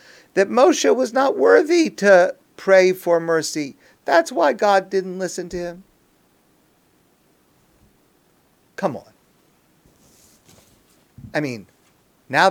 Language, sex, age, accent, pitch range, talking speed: English, male, 50-69, American, 170-245 Hz, 100 wpm